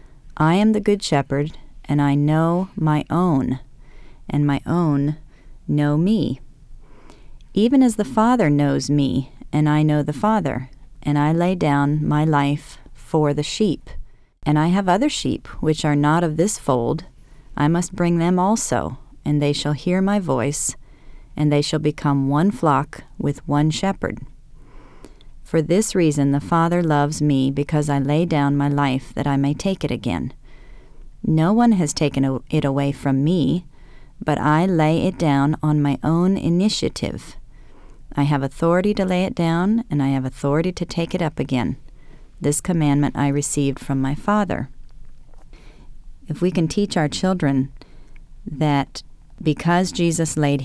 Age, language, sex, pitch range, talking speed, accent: 40-59, English, female, 140-170 Hz, 160 wpm, American